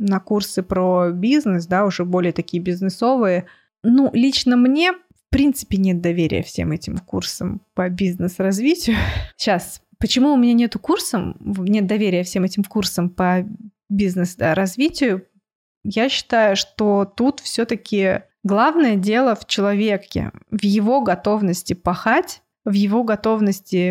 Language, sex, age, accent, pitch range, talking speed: Russian, female, 20-39, native, 185-225 Hz, 130 wpm